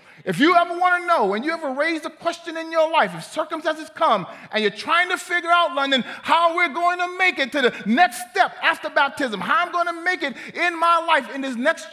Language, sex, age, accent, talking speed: English, male, 30-49, American, 245 wpm